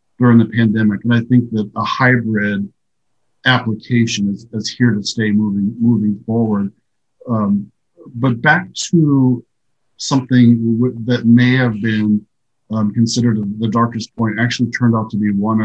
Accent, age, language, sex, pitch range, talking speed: American, 50-69, English, male, 110-120 Hz, 150 wpm